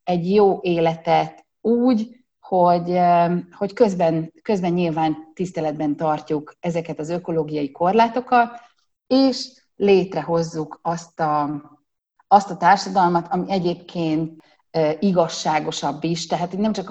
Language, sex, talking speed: Hungarian, female, 105 wpm